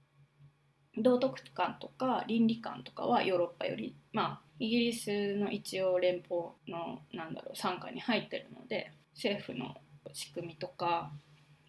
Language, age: Japanese, 20-39